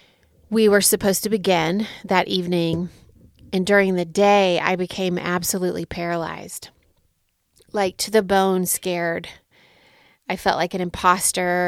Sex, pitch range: female, 170-195 Hz